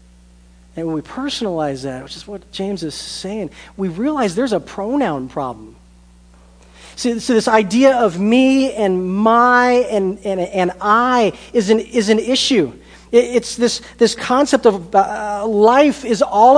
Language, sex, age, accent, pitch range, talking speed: English, male, 40-59, American, 180-245 Hz, 160 wpm